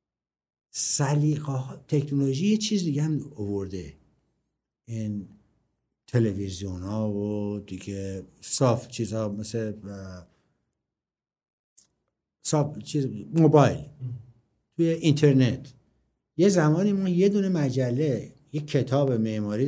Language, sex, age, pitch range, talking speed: Persian, male, 60-79, 105-145 Hz, 90 wpm